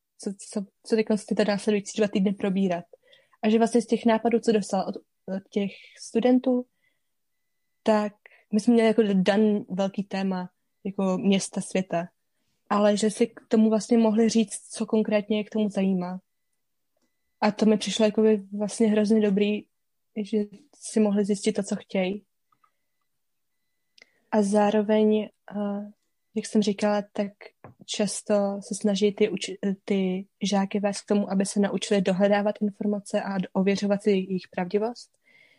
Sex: female